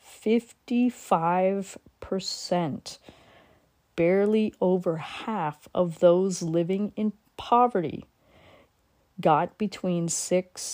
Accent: American